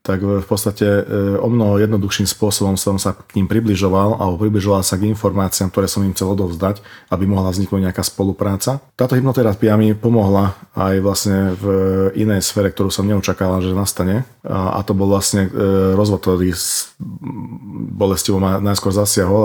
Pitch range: 95-105 Hz